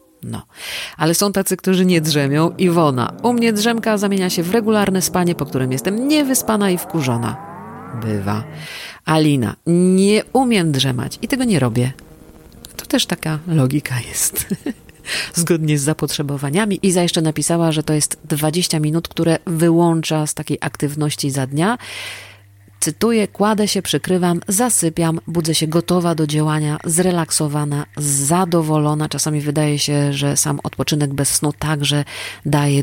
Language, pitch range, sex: Polish, 140-170 Hz, female